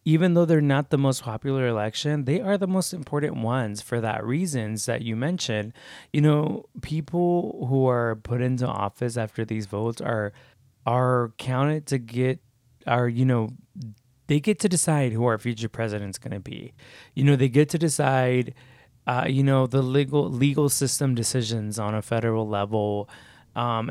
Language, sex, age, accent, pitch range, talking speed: English, male, 20-39, American, 115-140 Hz, 175 wpm